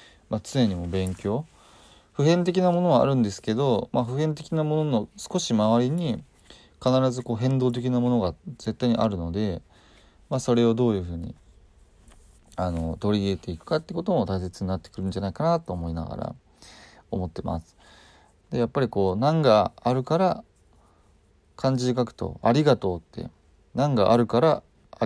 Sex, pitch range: male, 90-125 Hz